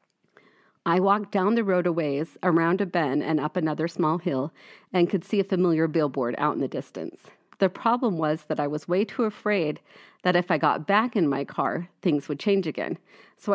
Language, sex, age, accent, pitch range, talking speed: English, female, 40-59, American, 155-195 Hz, 210 wpm